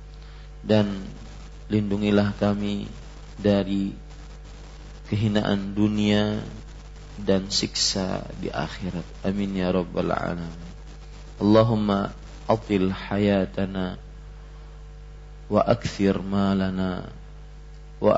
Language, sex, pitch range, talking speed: Malay, male, 95-105 Hz, 70 wpm